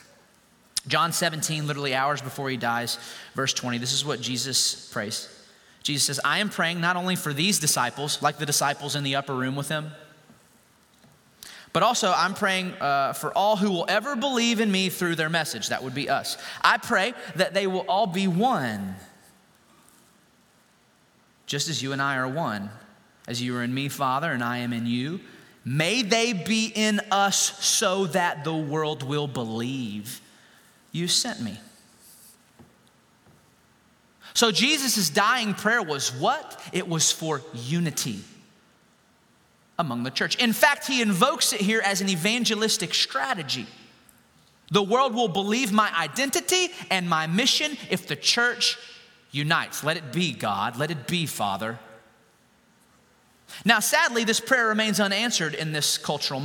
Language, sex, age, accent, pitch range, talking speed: English, male, 30-49, American, 140-215 Hz, 155 wpm